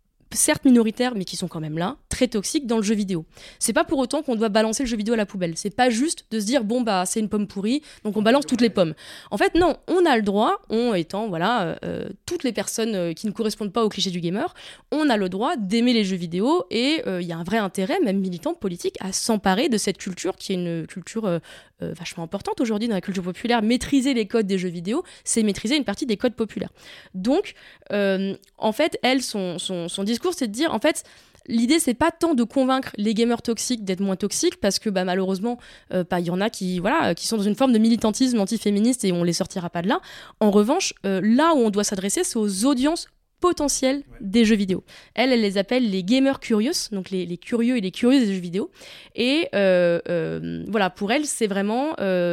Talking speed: 245 wpm